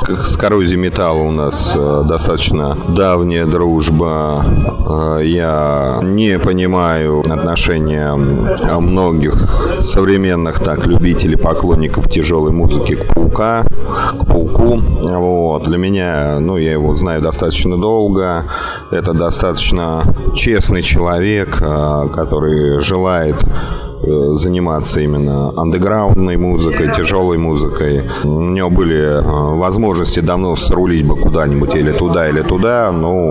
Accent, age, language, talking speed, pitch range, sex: native, 30-49, Russian, 105 wpm, 75-90 Hz, male